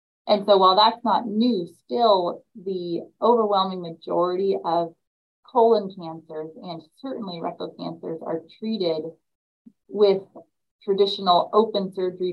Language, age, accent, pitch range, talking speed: English, 30-49, American, 170-220 Hz, 110 wpm